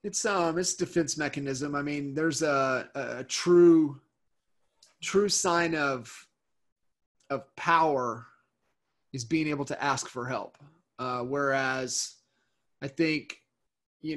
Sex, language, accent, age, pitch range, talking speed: male, English, American, 30-49, 130-155 Hz, 120 wpm